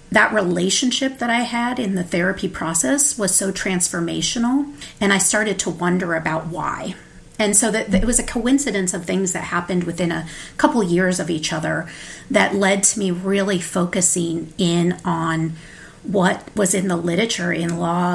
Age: 40-59